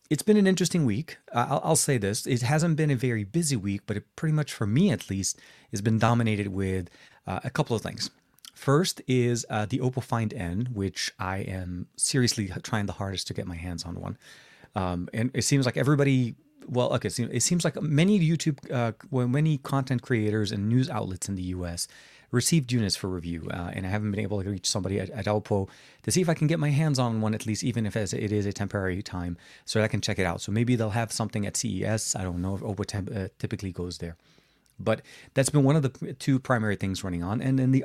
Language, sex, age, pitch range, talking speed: English, male, 30-49, 100-130 Hz, 235 wpm